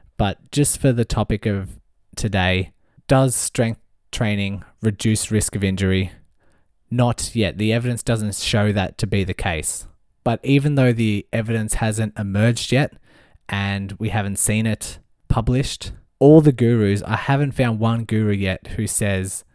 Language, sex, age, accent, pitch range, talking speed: English, male, 20-39, Australian, 95-115 Hz, 155 wpm